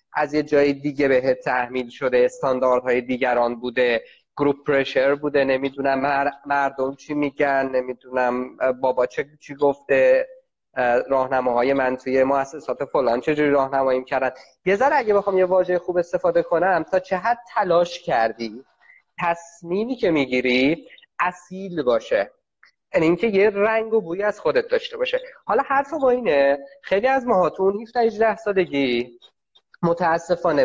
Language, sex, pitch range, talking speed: Persian, male, 140-195 Hz, 135 wpm